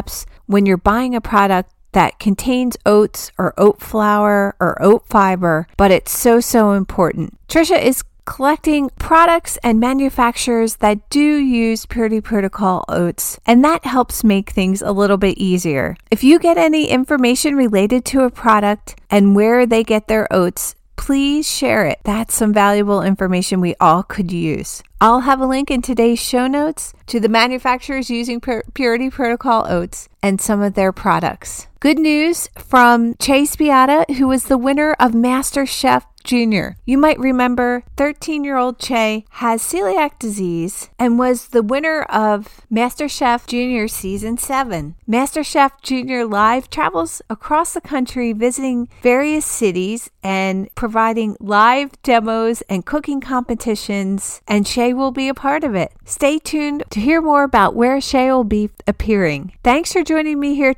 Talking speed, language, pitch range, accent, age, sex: 155 wpm, English, 205-270 Hz, American, 40-59, female